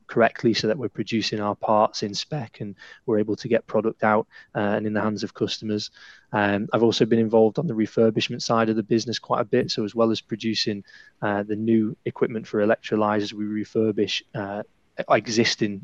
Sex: male